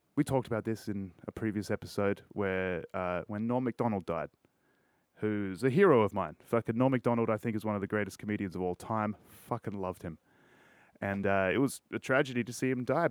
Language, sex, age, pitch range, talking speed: English, male, 30-49, 105-130 Hz, 210 wpm